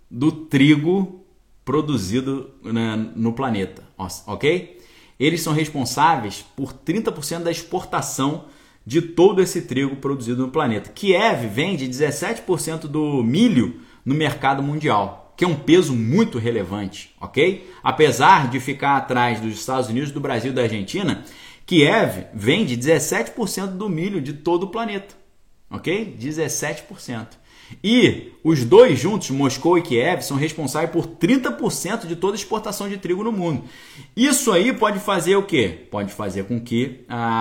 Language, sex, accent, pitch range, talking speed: Portuguese, male, Brazilian, 125-175 Hz, 140 wpm